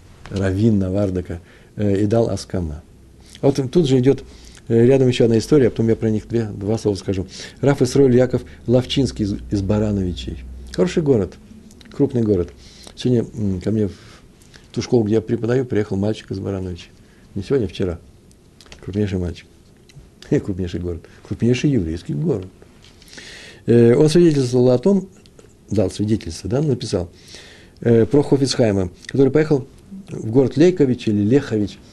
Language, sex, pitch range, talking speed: Russian, male, 100-130 Hz, 150 wpm